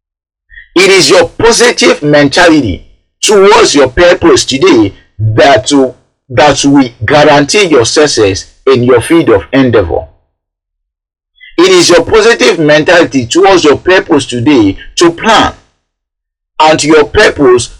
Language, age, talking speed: English, 50-69, 115 wpm